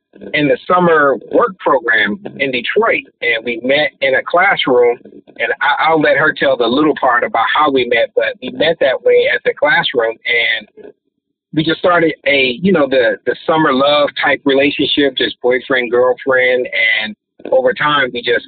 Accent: American